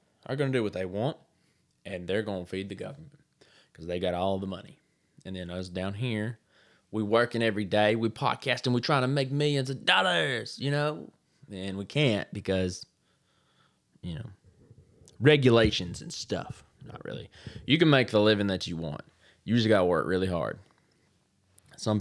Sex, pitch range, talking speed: male, 95-125 Hz, 185 wpm